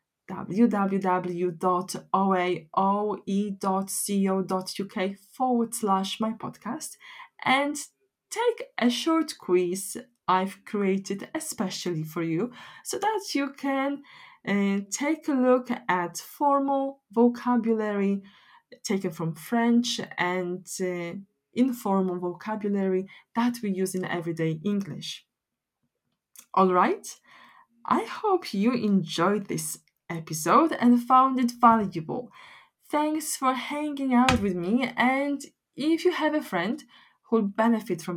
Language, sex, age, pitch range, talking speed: English, female, 20-39, 185-260 Hz, 105 wpm